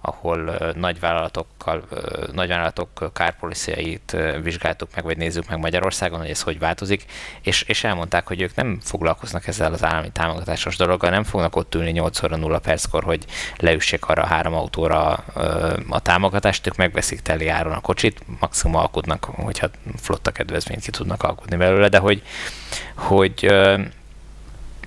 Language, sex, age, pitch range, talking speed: Hungarian, male, 20-39, 85-95 Hz, 145 wpm